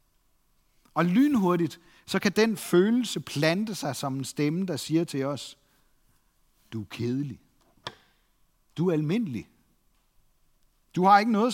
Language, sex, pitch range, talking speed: Danish, male, 135-185 Hz, 130 wpm